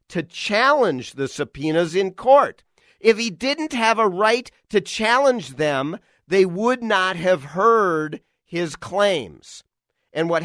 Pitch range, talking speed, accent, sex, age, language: 120-180 Hz, 140 wpm, American, male, 50-69, English